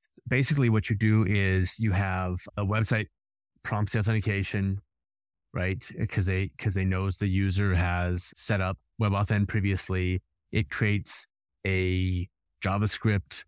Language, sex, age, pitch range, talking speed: English, male, 30-49, 90-105 Hz, 125 wpm